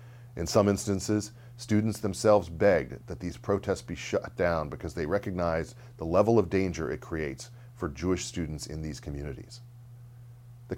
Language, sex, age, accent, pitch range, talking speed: English, male, 40-59, American, 85-120 Hz, 155 wpm